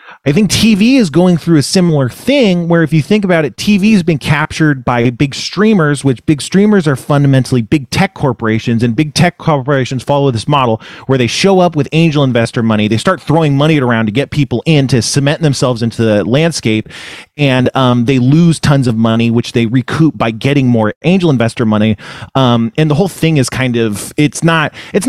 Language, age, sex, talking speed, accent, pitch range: English, 30-49, male, 210 wpm, American, 125-160 Hz